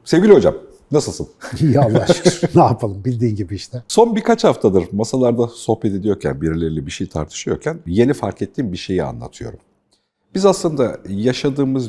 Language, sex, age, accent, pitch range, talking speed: Turkish, male, 60-79, native, 90-130 Hz, 150 wpm